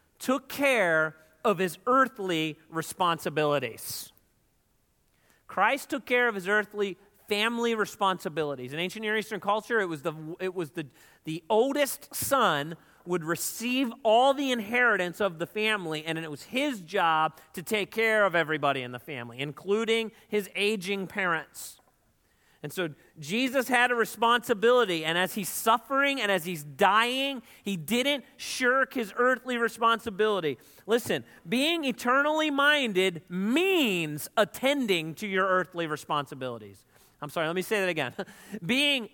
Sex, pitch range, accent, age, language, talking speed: male, 170-265 Hz, American, 40-59, English, 140 wpm